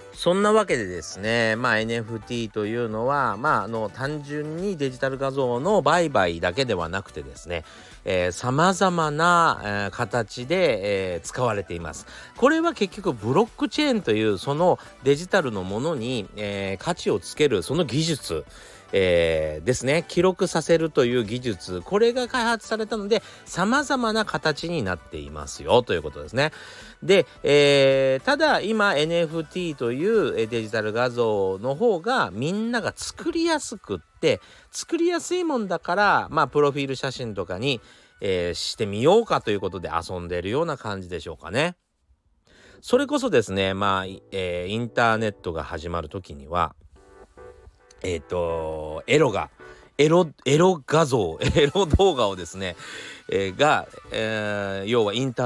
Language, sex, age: Japanese, male, 40-59